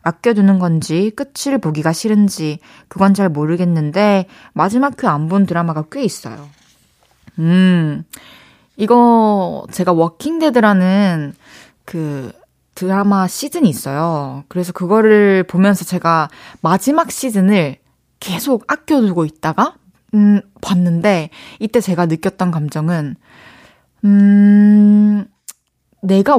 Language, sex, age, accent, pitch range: Korean, female, 20-39, native, 165-225 Hz